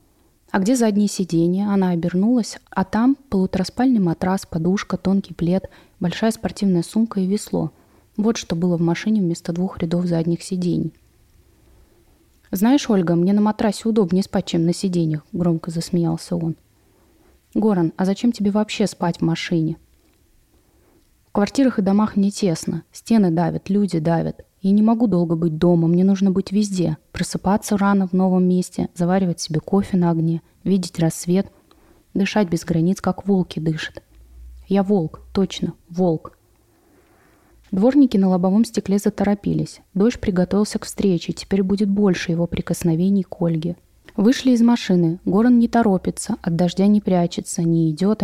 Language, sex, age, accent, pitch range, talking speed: Russian, female, 20-39, native, 170-205 Hz, 150 wpm